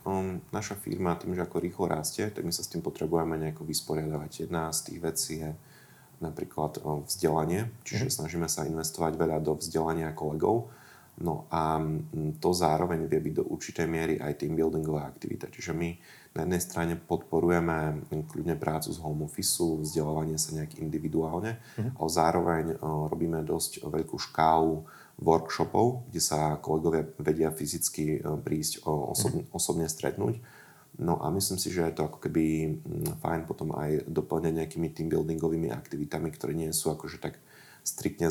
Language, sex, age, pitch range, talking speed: Slovak, male, 30-49, 75-80 Hz, 150 wpm